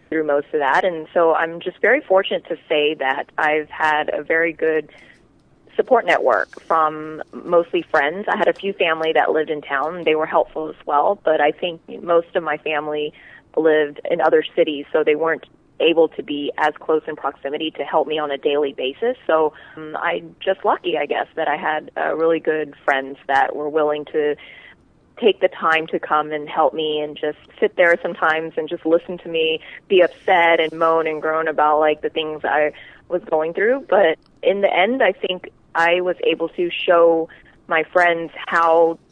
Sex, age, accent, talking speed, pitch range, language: female, 20-39, American, 195 wpm, 150-170 Hz, English